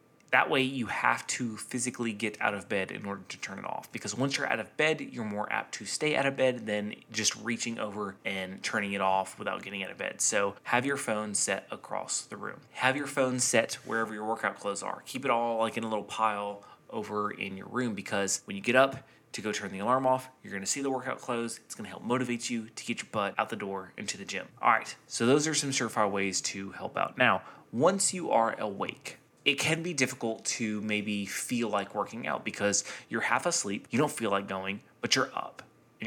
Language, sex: English, male